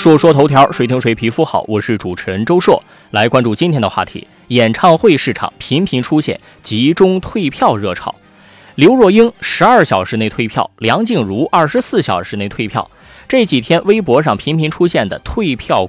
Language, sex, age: Chinese, male, 20-39